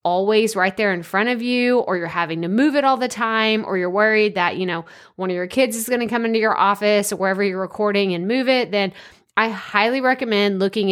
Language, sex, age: English, female, 20-39